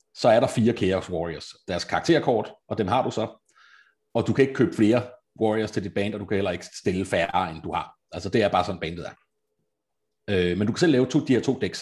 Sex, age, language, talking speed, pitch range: male, 30-49, Danish, 250 wpm, 95-125 Hz